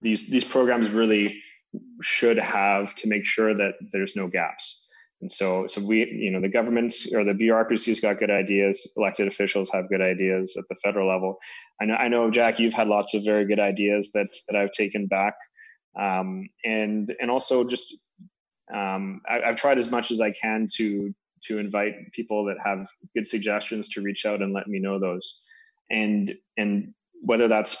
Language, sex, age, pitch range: English, male, 20-39, 100-115 Hz